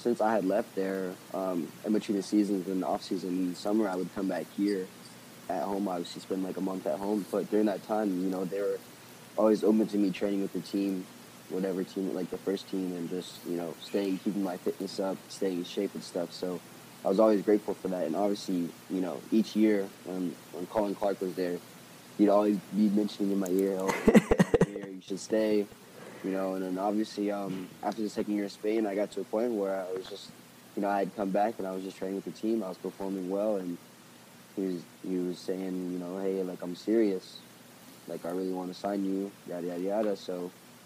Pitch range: 90-100 Hz